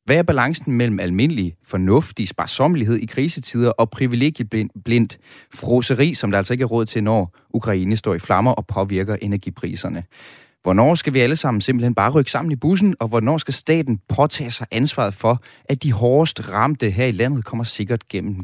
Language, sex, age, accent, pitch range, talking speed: Danish, male, 30-49, native, 105-140 Hz, 180 wpm